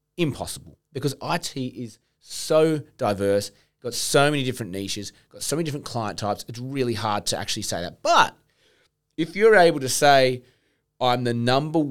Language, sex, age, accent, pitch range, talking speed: English, male, 30-49, Australian, 115-150 Hz, 165 wpm